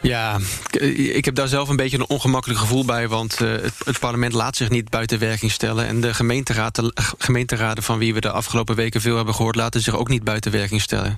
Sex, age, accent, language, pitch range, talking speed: male, 20-39, Dutch, Dutch, 115-125 Hz, 215 wpm